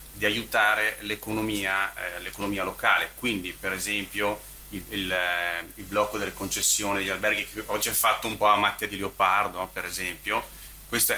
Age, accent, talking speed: 30-49, native, 150 wpm